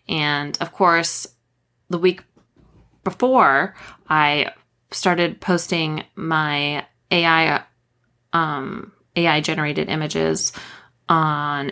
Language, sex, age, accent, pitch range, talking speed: English, female, 20-39, American, 150-185 Hz, 80 wpm